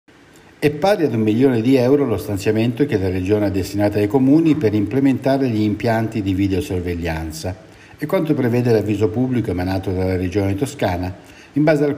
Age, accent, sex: 60-79, native, male